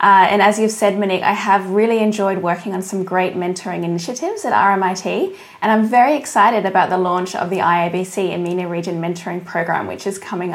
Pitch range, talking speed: 190-240 Hz, 200 wpm